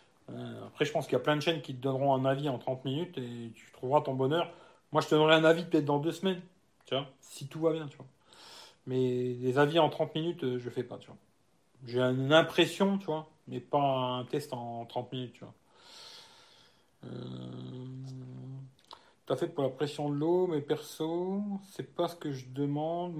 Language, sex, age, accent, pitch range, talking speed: French, male, 40-59, French, 130-170 Hz, 210 wpm